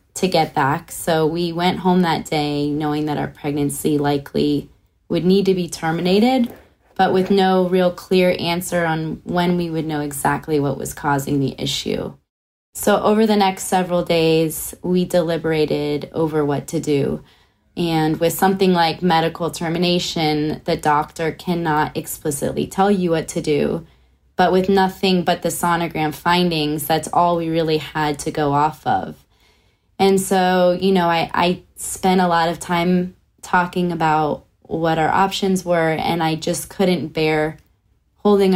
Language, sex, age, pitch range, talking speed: English, female, 20-39, 150-180 Hz, 160 wpm